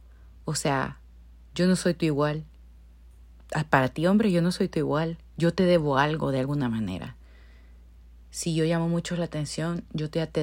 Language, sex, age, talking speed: Spanish, female, 30-49, 180 wpm